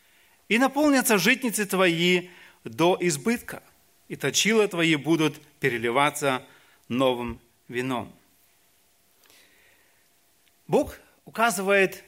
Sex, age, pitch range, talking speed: male, 40-59, 150-220 Hz, 75 wpm